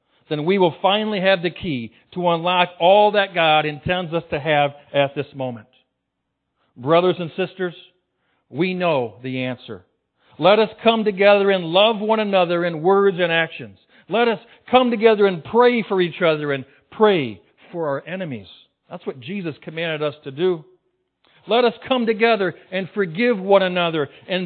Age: 60-79